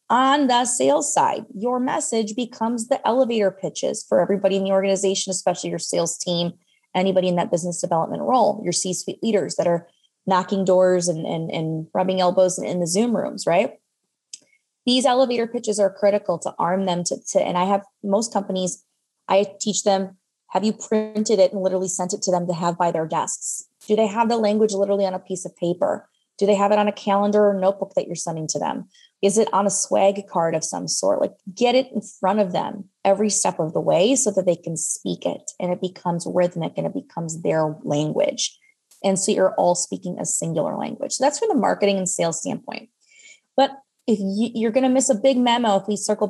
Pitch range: 180-220 Hz